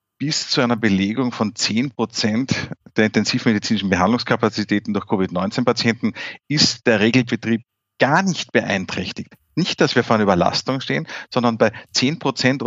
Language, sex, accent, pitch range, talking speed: German, male, Austrian, 110-150 Hz, 130 wpm